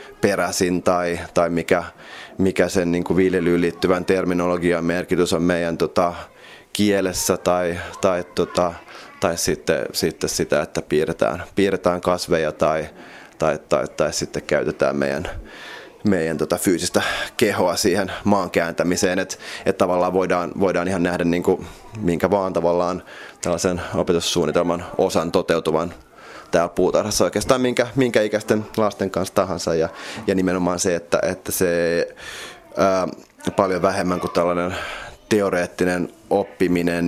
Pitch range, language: 85-95 Hz, Finnish